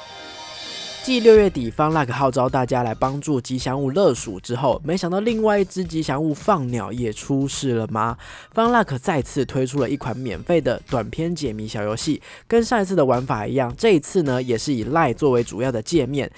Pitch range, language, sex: 120-165 Hz, Chinese, male